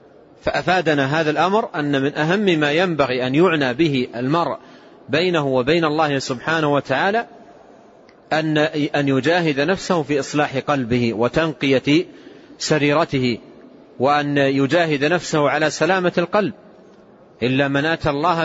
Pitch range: 140-175 Hz